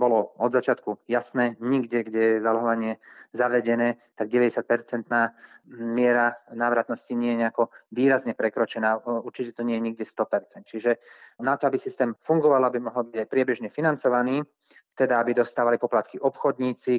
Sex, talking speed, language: male, 140 wpm, Slovak